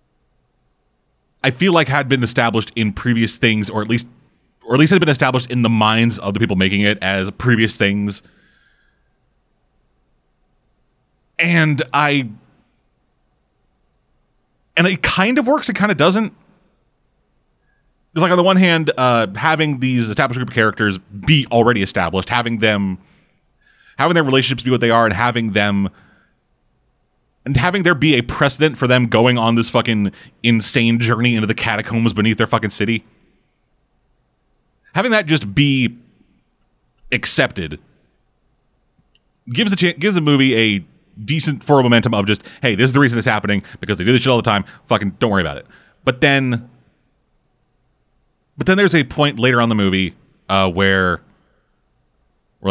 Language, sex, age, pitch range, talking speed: English, male, 30-49, 105-145 Hz, 160 wpm